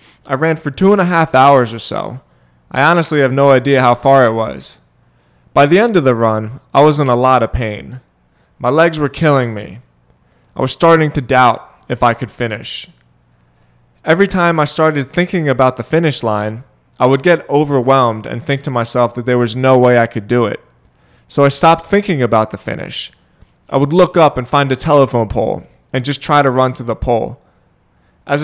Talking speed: 205 wpm